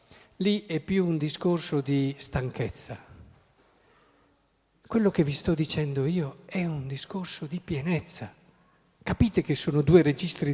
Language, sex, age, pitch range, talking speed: Italian, male, 50-69, 155-210 Hz, 130 wpm